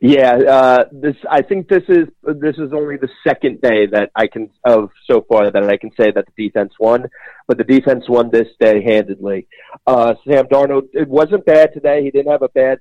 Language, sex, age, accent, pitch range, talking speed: English, male, 30-49, American, 110-135 Hz, 215 wpm